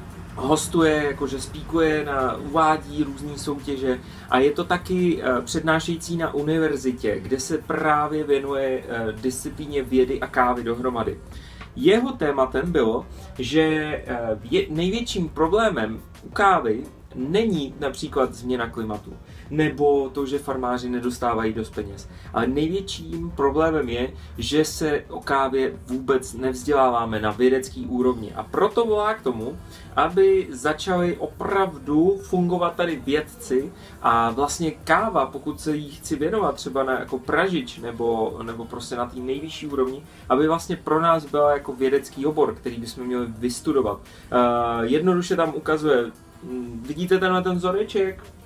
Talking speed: 130 wpm